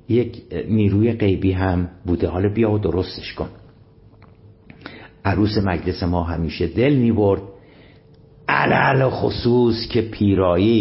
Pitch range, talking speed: 95-140 Hz, 110 wpm